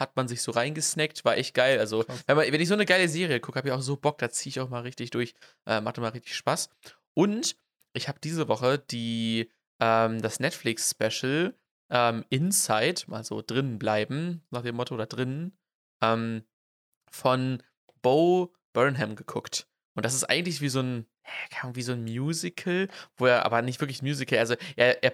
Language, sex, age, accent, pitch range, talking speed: German, male, 20-39, German, 115-140 Hz, 190 wpm